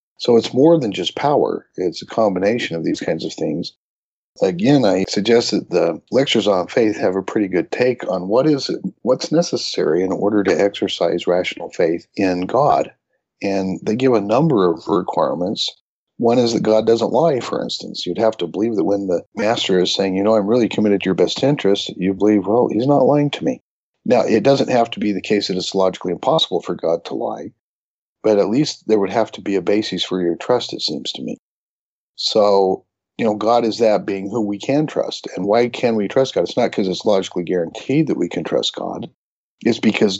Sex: male